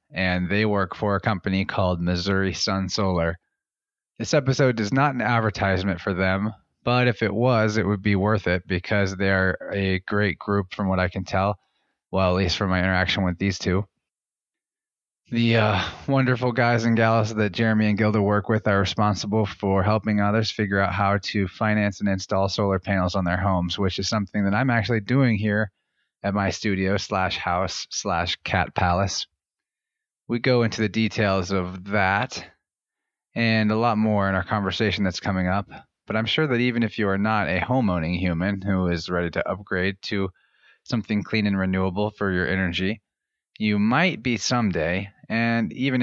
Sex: male